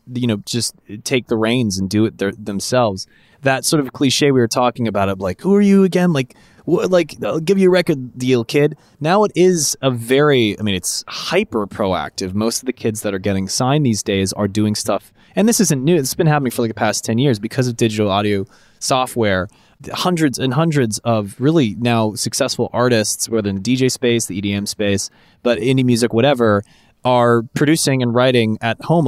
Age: 20-39